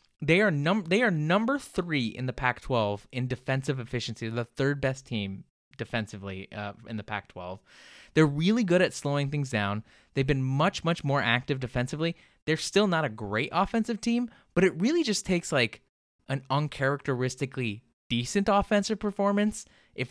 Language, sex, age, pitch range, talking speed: English, male, 20-39, 115-170 Hz, 165 wpm